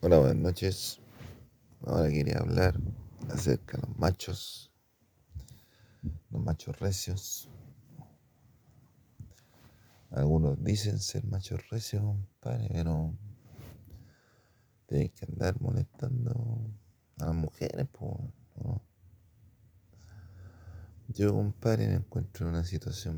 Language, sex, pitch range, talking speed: Spanish, male, 95-120 Hz, 95 wpm